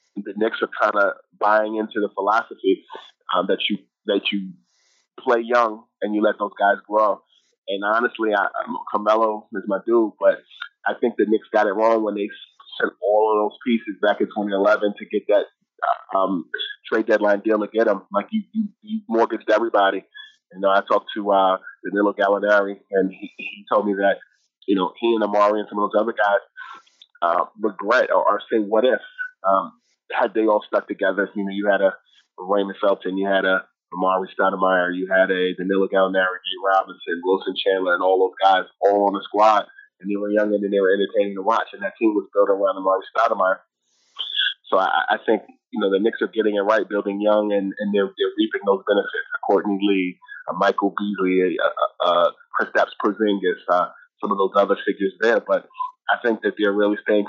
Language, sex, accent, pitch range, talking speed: English, male, American, 95-115 Hz, 205 wpm